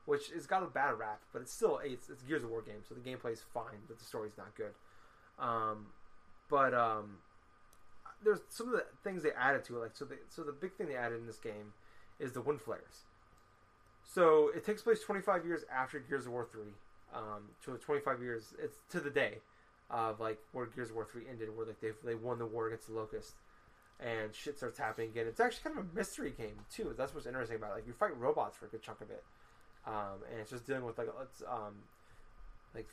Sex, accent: male, American